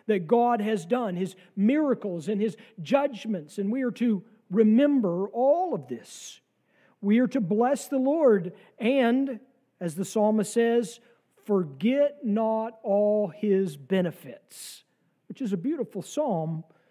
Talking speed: 135 wpm